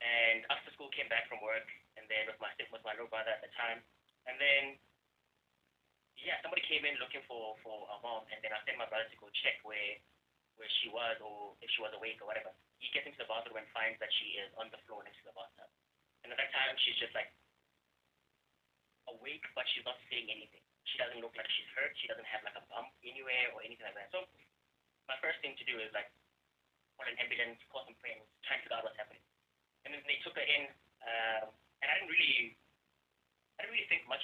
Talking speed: 235 wpm